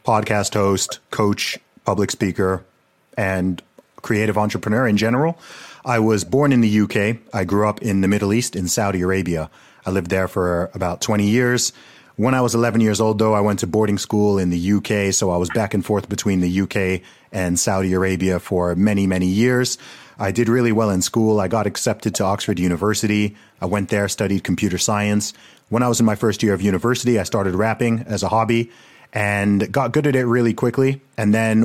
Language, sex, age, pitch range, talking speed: English, male, 30-49, 95-115 Hz, 200 wpm